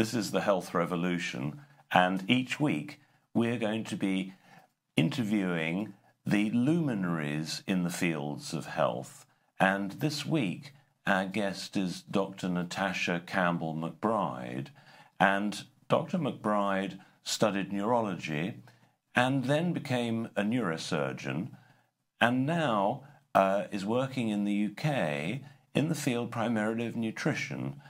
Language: English